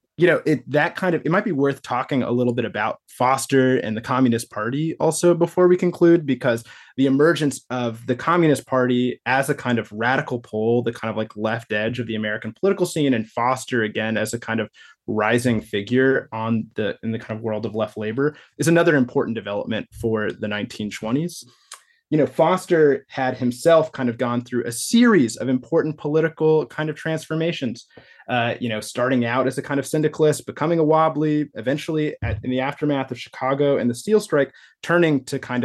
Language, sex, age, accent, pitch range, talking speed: English, male, 20-39, American, 115-150 Hz, 195 wpm